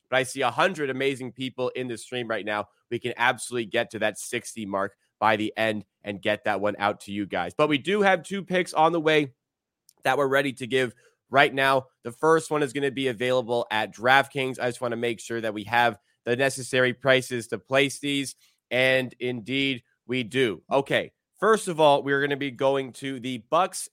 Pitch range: 120-145 Hz